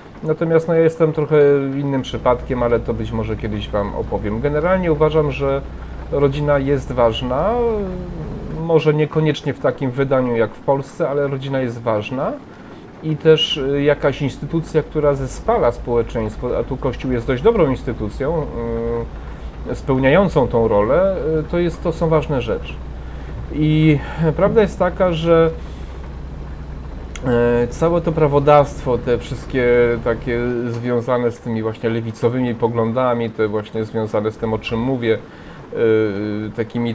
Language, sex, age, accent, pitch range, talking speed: Polish, male, 30-49, native, 115-150 Hz, 130 wpm